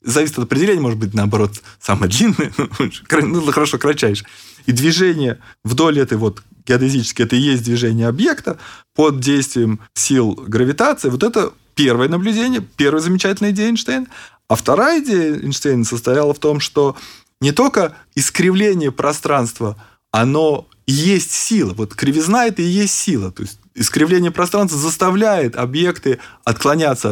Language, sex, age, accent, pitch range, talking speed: Russian, male, 20-39, native, 115-165 Hz, 140 wpm